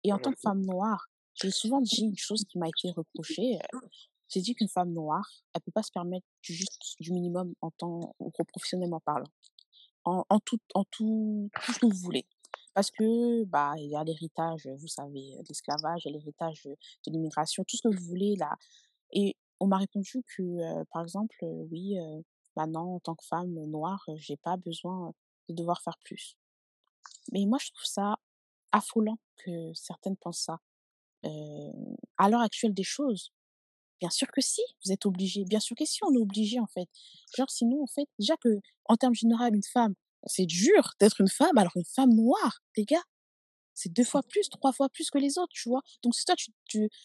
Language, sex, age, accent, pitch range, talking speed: French, female, 20-39, French, 170-235 Hz, 205 wpm